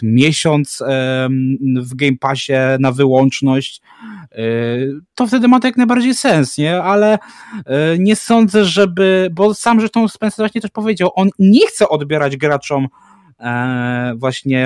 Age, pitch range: 20-39, 145-215 Hz